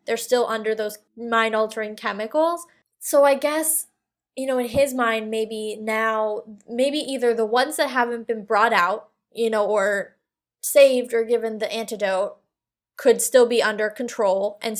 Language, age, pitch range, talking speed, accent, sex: English, 10-29, 215-250 Hz, 160 wpm, American, female